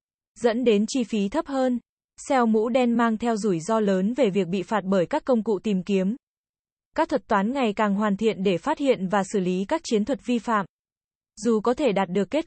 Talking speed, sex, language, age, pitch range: 230 wpm, female, Vietnamese, 20-39, 205-245 Hz